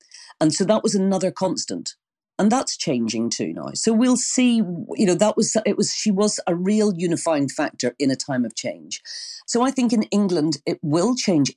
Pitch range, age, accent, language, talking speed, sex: 145-220 Hz, 40-59, British, English, 200 wpm, female